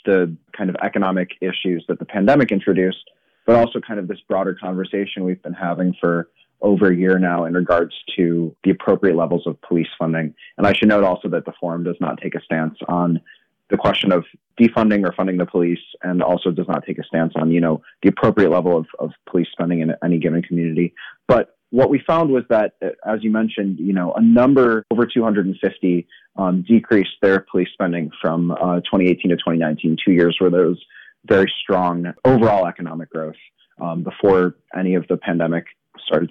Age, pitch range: 30-49, 85-110 Hz